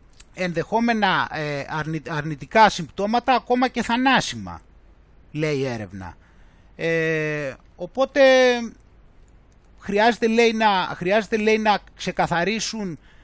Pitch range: 150-225 Hz